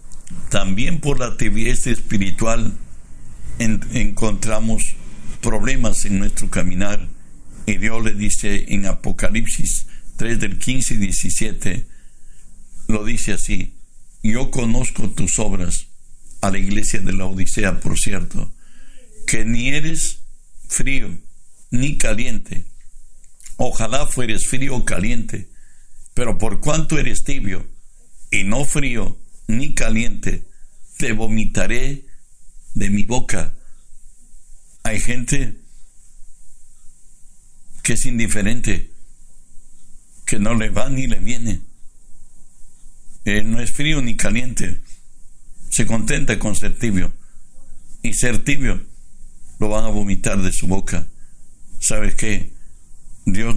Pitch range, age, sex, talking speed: 95-115 Hz, 60-79, male, 110 wpm